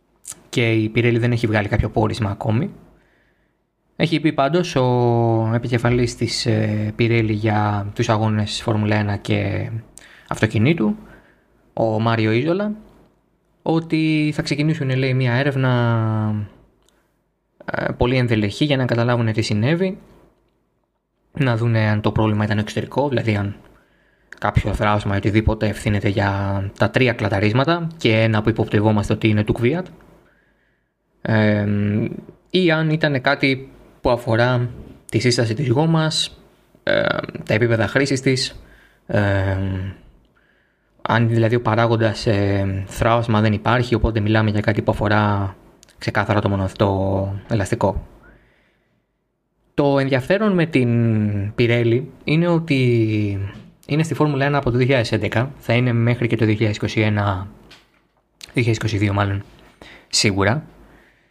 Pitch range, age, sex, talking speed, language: 105-130 Hz, 20-39, male, 115 wpm, Greek